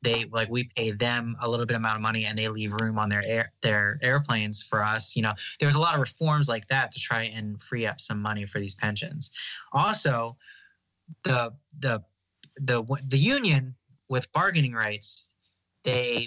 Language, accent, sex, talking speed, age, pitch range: English, American, male, 190 wpm, 20-39, 110-135 Hz